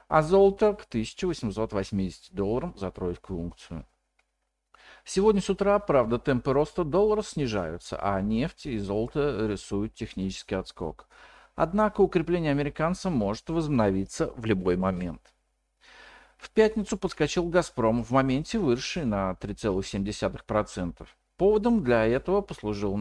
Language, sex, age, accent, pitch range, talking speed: Russian, male, 50-69, native, 100-150 Hz, 115 wpm